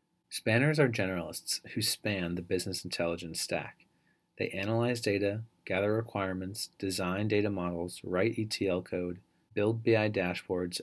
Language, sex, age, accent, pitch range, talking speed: English, male, 30-49, American, 90-115 Hz, 125 wpm